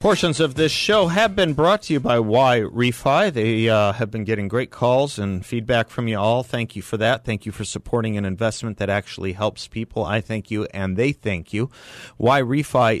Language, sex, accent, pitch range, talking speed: English, male, American, 95-120 Hz, 210 wpm